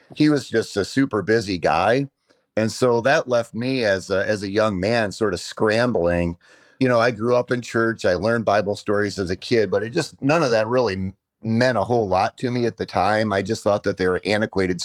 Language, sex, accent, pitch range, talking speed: English, male, American, 100-120 Hz, 235 wpm